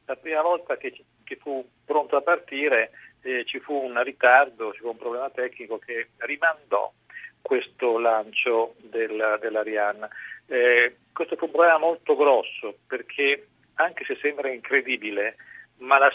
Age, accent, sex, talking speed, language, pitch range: 50-69, native, male, 145 wpm, Italian, 125-175 Hz